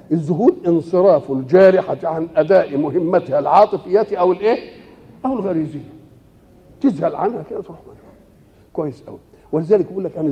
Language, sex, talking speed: Arabic, male, 120 wpm